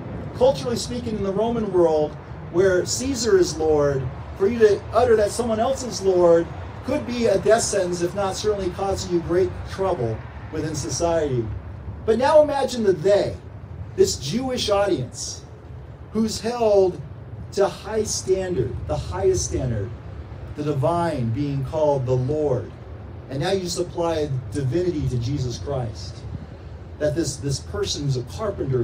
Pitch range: 115-175 Hz